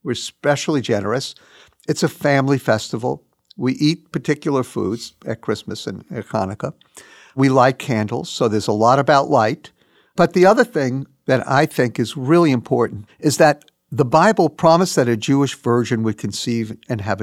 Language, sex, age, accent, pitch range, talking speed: English, male, 60-79, American, 120-165 Hz, 165 wpm